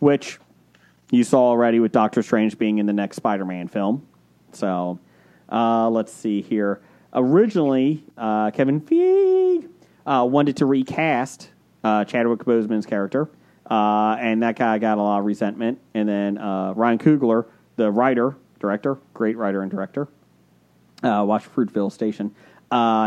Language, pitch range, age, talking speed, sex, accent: English, 105-125 Hz, 30-49, 145 wpm, male, American